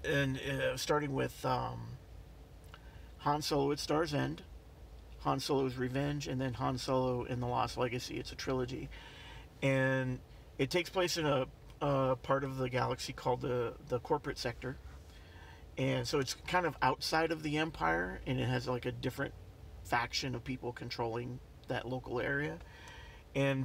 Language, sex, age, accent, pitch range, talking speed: English, male, 50-69, American, 125-140 Hz, 160 wpm